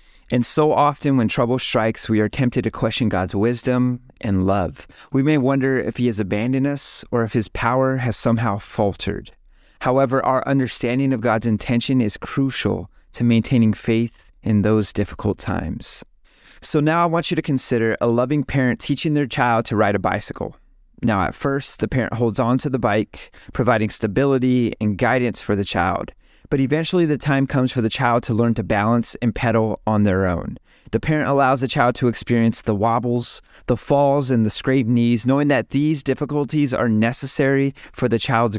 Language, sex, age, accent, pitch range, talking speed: English, male, 30-49, American, 110-135 Hz, 185 wpm